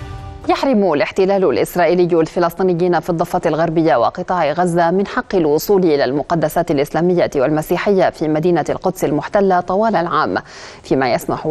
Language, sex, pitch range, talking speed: Arabic, female, 165-200 Hz, 125 wpm